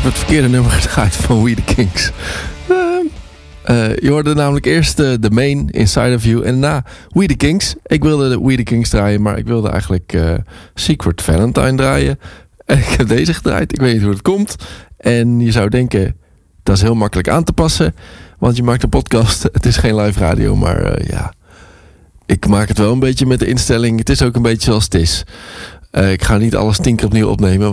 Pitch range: 90-120 Hz